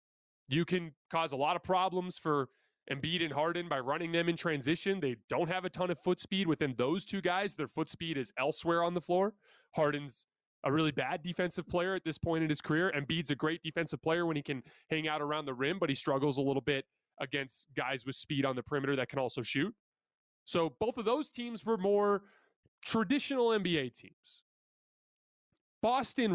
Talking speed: 205 wpm